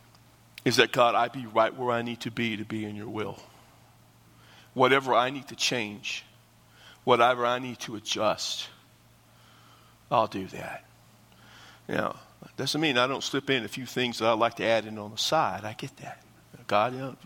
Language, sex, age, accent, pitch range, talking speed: English, male, 50-69, American, 115-130 Hz, 195 wpm